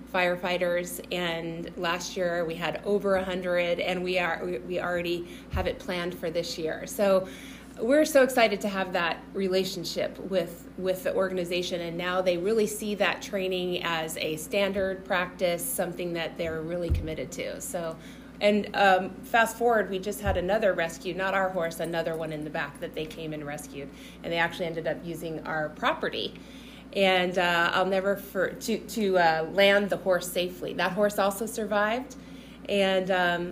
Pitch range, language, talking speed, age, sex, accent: 175-200 Hz, English, 175 wpm, 30-49, female, American